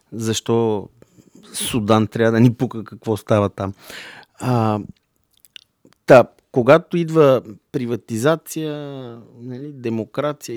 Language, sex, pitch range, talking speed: Bulgarian, male, 110-130 Hz, 90 wpm